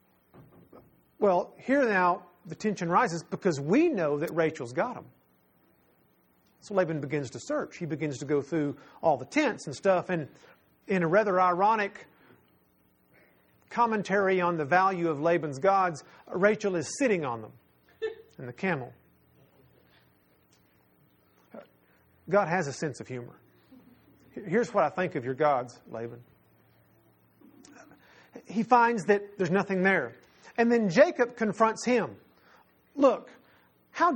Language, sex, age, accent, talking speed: English, male, 40-59, American, 130 wpm